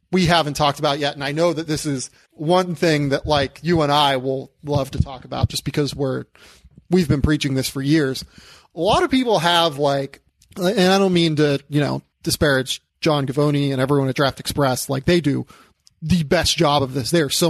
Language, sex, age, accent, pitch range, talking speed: English, male, 30-49, American, 140-170 Hz, 220 wpm